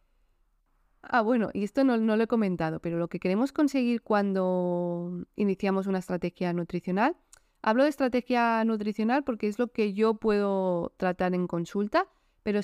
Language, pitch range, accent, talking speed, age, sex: Spanish, 180-235 Hz, Spanish, 155 wpm, 20-39, female